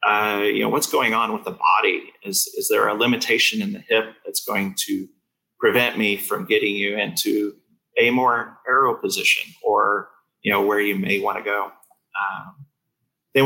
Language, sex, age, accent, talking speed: English, male, 30-49, American, 185 wpm